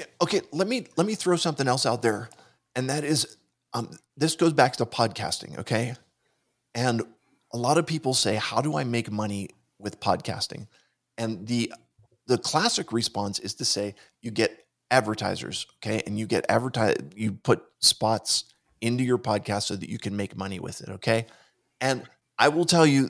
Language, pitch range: English, 110-130 Hz